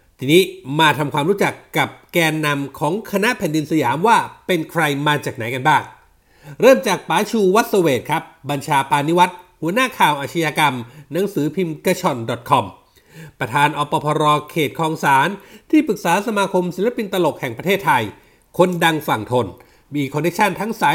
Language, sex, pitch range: Thai, male, 145-200 Hz